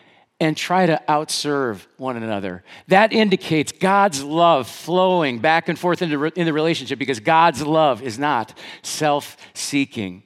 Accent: American